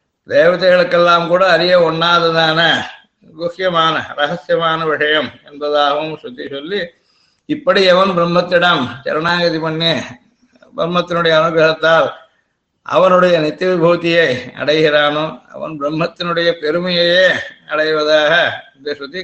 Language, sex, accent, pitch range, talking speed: Tamil, male, native, 160-185 Hz, 85 wpm